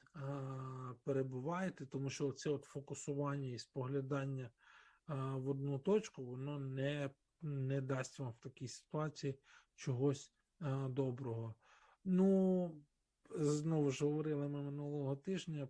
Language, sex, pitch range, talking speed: Ukrainian, male, 135-150 Hz, 105 wpm